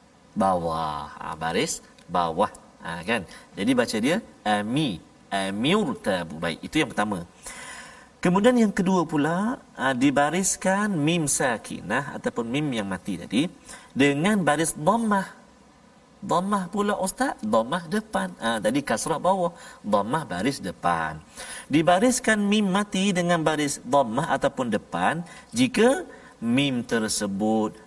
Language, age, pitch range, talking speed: Malayalam, 40-59, 145-245 Hz, 115 wpm